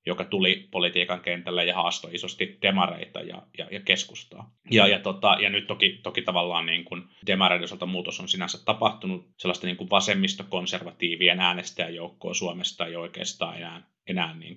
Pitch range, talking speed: 90-120 Hz, 155 wpm